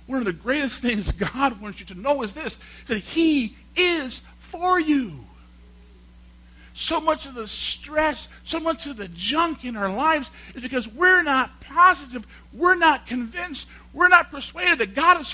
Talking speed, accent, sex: 170 wpm, American, male